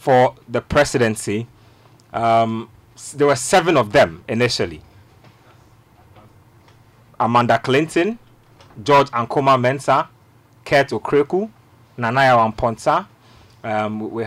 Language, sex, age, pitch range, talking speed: English, male, 30-49, 115-135 Hz, 85 wpm